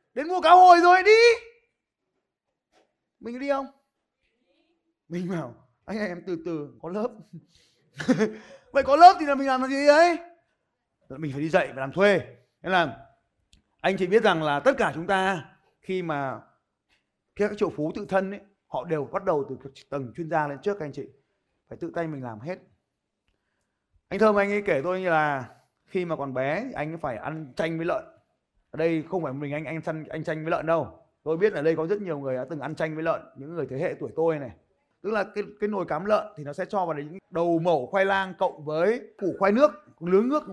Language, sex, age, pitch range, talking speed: Vietnamese, male, 20-39, 155-210 Hz, 220 wpm